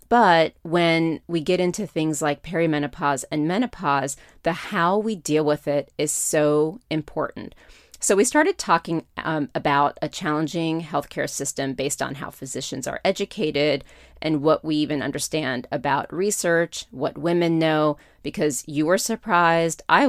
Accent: American